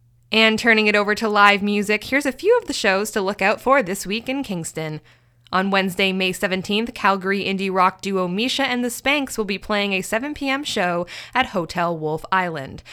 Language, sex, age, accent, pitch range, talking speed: English, female, 20-39, American, 175-220 Hz, 200 wpm